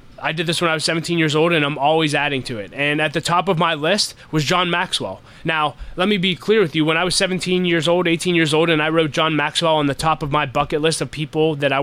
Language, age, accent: English, 20-39, American